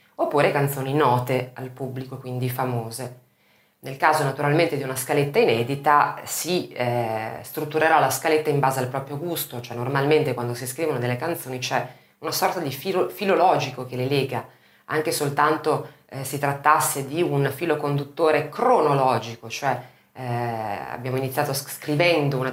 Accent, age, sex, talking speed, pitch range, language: native, 30-49, female, 145 wpm, 125-155 Hz, Italian